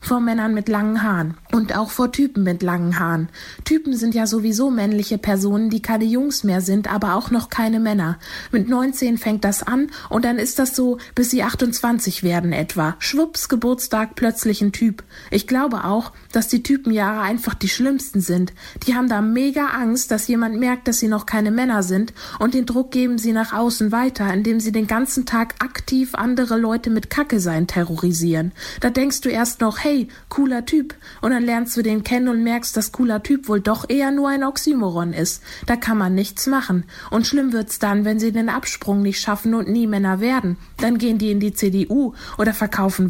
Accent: German